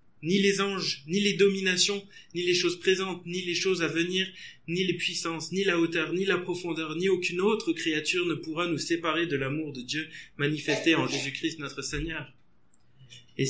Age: 20-39